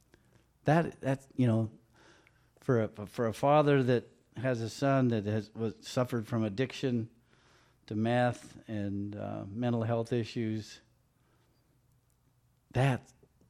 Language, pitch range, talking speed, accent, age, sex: English, 105-125 Hz, 120 wpm, American, 50-69, male